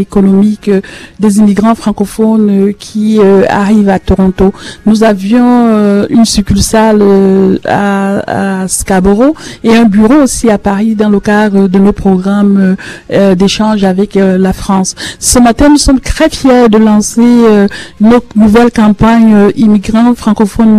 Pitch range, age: 205-235 Hz, 50-69